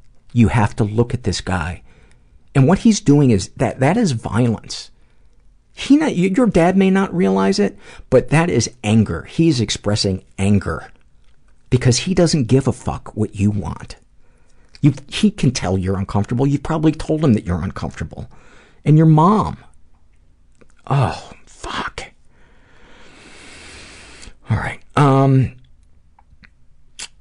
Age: 50-69